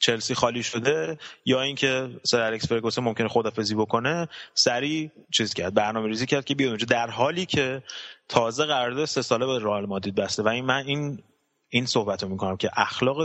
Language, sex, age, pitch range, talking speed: Persian, male, 20-39, 110-145 Hz, 170 wpm